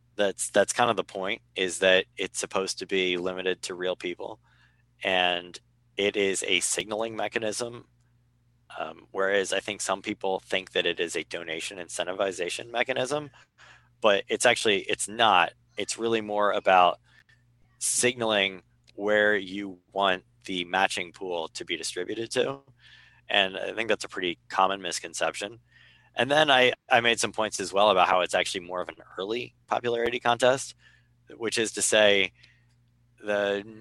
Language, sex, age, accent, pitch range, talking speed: English, male, 20-39, American, 100-120 Hz, 155 wpm